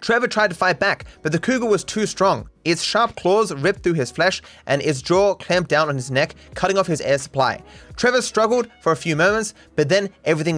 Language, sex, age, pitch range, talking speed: English, male, 20-39, 140-190 Hz, 225 wpm